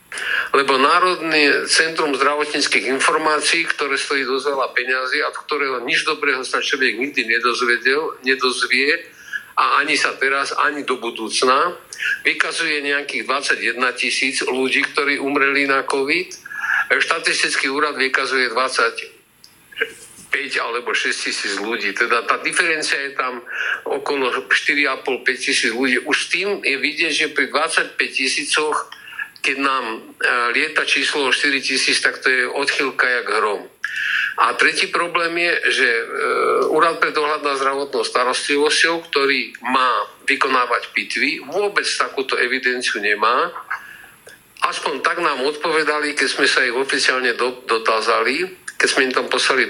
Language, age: Slovak, 50-69